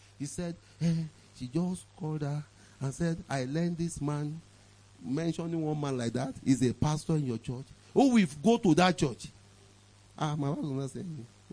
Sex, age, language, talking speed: male, 40-59, English, 185 wpm